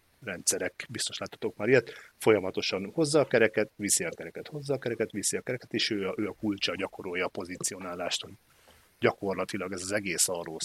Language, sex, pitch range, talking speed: Hungarian, male, 95-110 Hz, 180 wpm